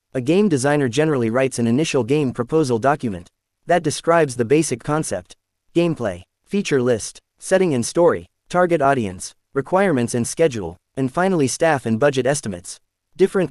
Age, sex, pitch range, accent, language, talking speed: 30-49, male, 115-155 Hz, American, English, 145 wpm